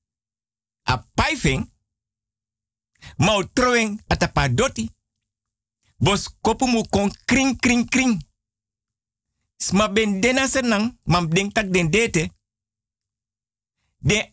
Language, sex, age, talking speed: Dutch, male, 50-69, 85 wpm